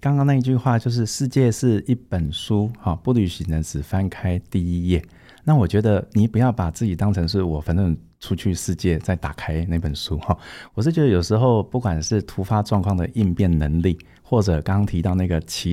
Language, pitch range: Chinese, 80-105 Hz